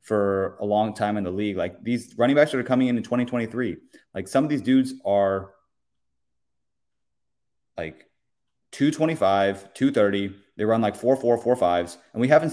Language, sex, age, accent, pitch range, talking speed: English, male, 30-49, American, 95-120 Hz, 170 wpm